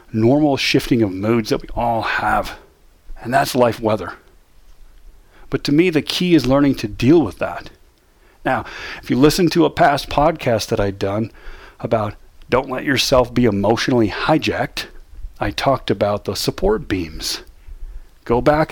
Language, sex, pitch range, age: English, male, 110-145 Hz, 40-59